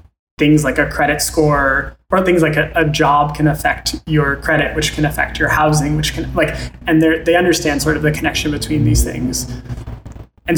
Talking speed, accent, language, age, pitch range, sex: 195 wpm, American, English, 20-39, 145-160 Hz, male